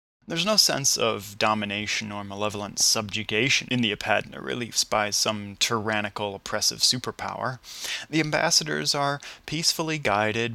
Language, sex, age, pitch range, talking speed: English, male, 20-39, 105-120 Hz, 125 wpm